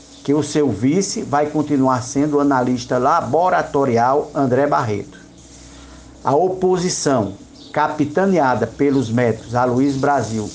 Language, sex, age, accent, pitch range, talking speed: Portuguese, male, 60-79, Brazilian, 130-185 Hz, 110 wpm